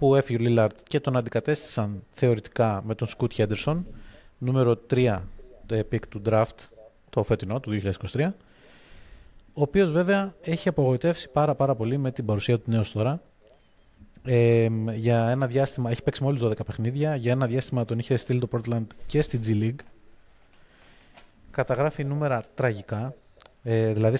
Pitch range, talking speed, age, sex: 110-140 Hz, 150 wpm, 20-39, male